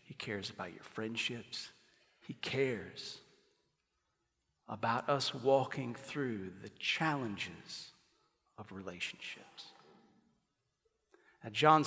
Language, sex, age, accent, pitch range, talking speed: English, male, 40-59, American, 135-185 Hz, 80 wpm